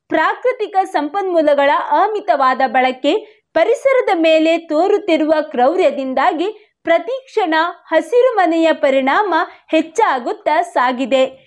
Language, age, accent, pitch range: Kannada, 30-49, native, 280-385 Hz